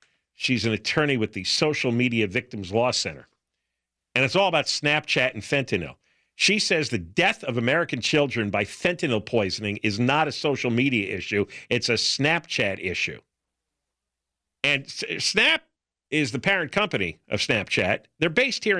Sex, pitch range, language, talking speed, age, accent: male, 115-195 Hz, English, 155 wpm, 50-69, American